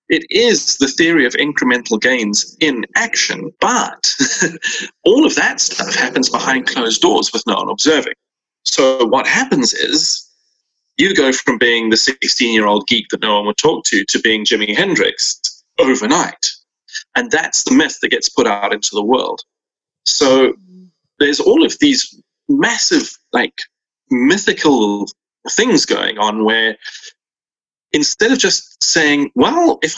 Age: 30-49